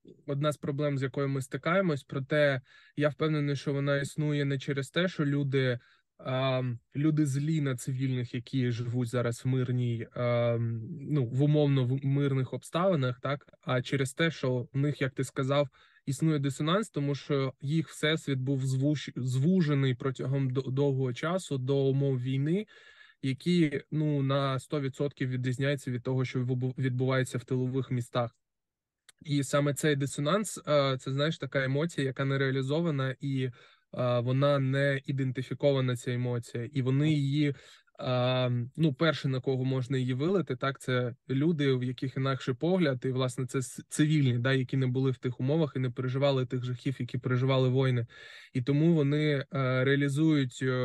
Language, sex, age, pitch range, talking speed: Ukrainian, male, 20-39, 130-145 Hz, 150 wpm